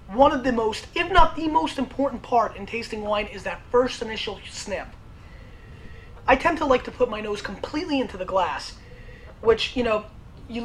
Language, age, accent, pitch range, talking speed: English, 30-49, American, 205-255 Hz, 190 wpm